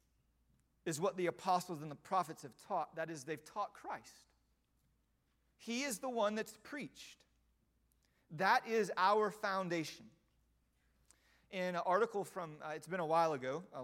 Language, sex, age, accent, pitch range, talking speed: English, male, 40-59, American, 145-185 Hz, 150 wpm